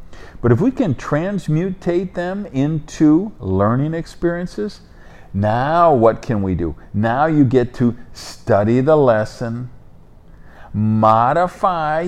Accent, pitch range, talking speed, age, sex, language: American, 105-155 Hz, 110 wpm, 50-69, male, English